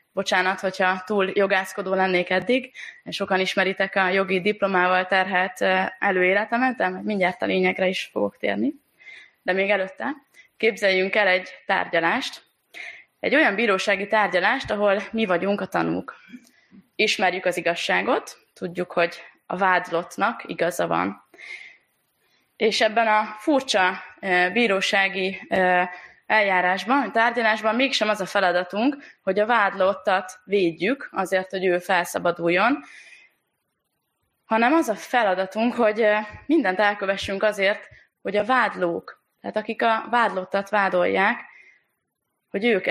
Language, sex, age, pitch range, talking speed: Hungarian, female, 20-39, 185-215 Hz, 115 wpm